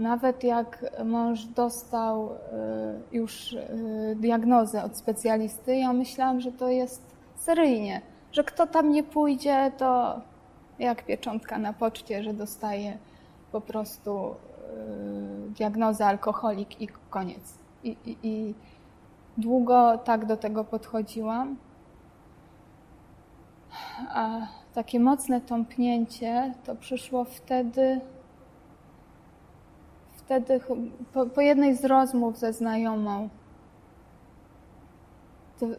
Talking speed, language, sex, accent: 90 wpm, Polish, female, native